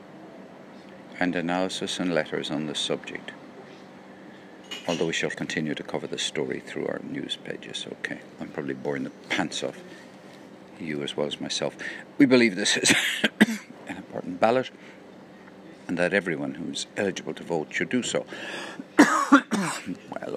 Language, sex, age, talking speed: English, male, 60-79, 145 wpm